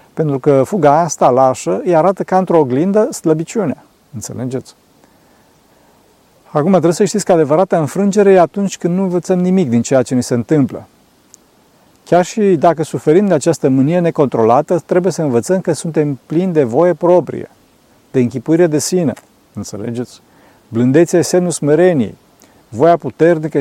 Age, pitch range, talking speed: 40-59, 130-175 Hz, 150 wpm